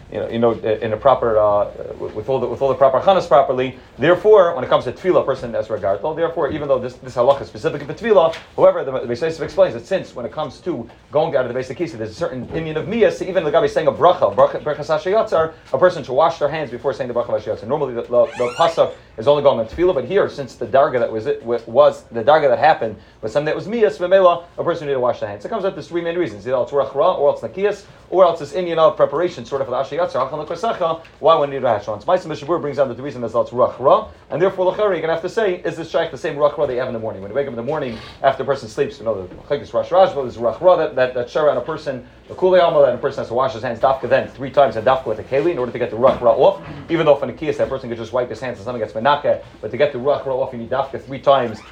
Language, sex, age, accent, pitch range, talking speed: English, male, 30-49, American, 125-170 Hz, 290 wpm